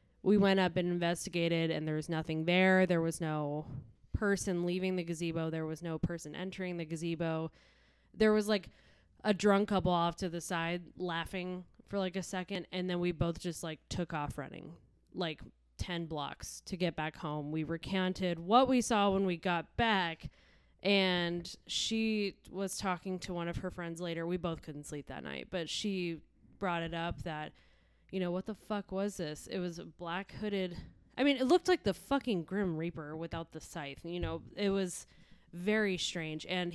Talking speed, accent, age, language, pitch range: 190 wpm, American, 10-29, English, 155-185 Hz